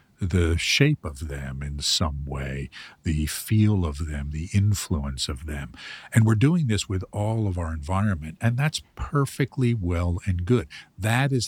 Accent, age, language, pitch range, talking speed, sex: American, 50-69, English, 80-105 Hz, 165 wpm, male